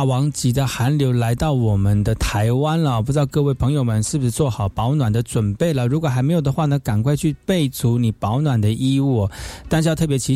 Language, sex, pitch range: Chinese, male, 110-150 Hz